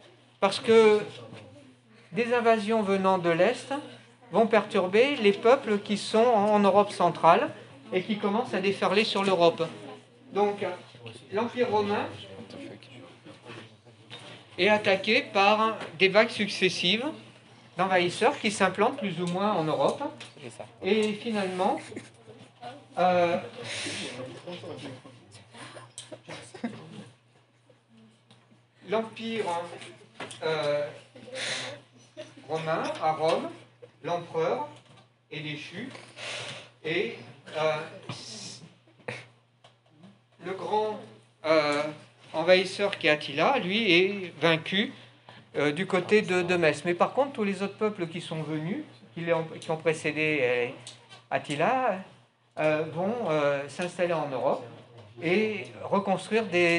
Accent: French